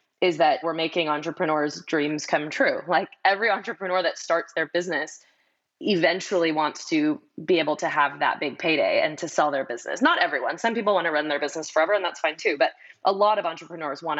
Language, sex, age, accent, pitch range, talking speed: English, female, 20-39, American, 155-185 Hz, 210 wpm